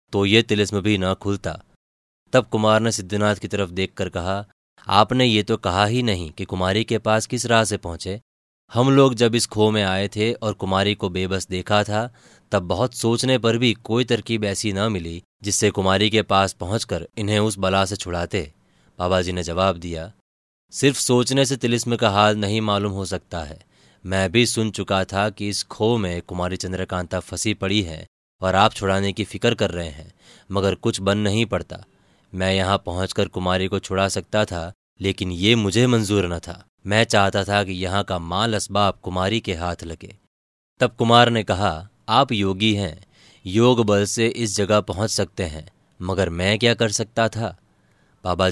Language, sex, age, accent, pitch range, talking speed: Hindi, male, 20-39, native, 95-110 Hz, 185 wpm